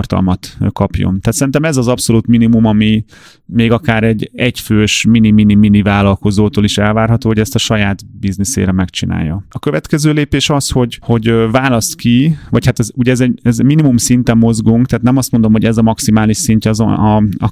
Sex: male